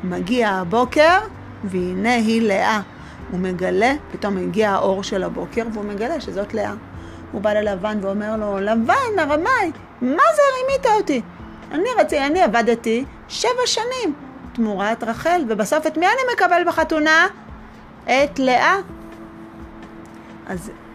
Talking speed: 115 wpm